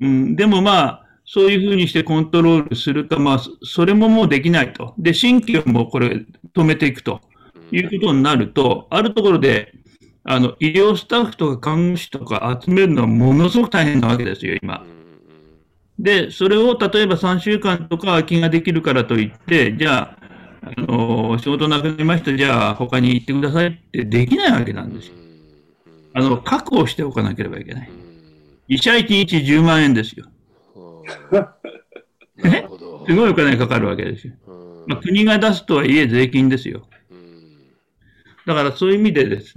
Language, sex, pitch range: Japanese, male, 120-175 Hz